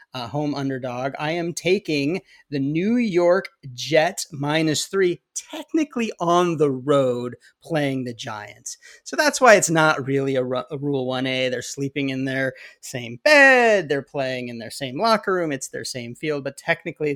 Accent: American